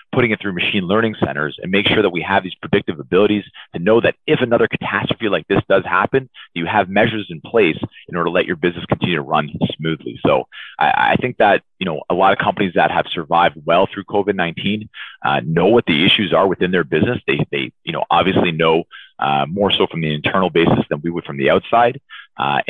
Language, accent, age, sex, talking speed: English, American, 30-49, male, 225 wpm